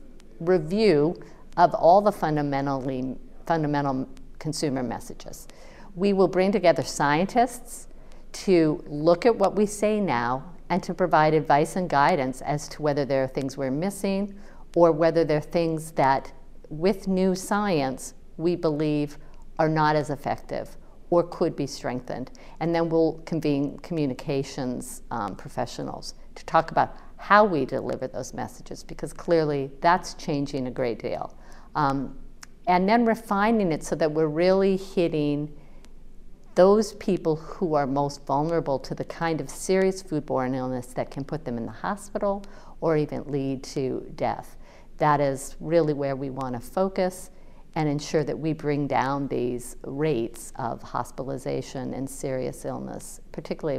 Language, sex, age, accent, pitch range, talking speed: English, female, 50-69, American, 140-185 Hz, 145 wpm